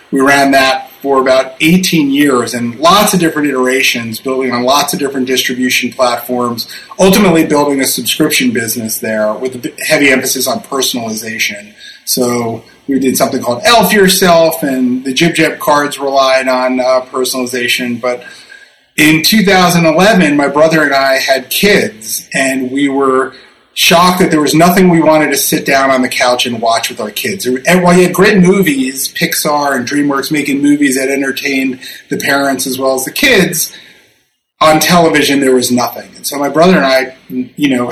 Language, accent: English, American